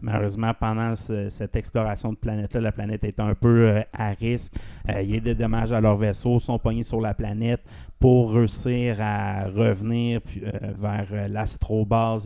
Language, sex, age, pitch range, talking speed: French, male, 30-49, 100-115 Hz, 190 wpm